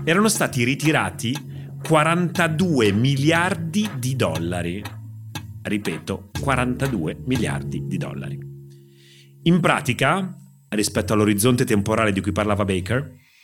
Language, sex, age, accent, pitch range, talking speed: Italian, male, 40-59, native, 100-155 Hz, 95 wpm